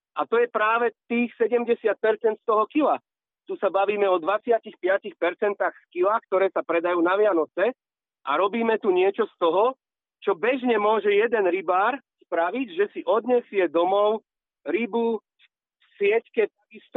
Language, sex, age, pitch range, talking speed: Slovak, male, 40-59, 205-255 Hz, 140 wpm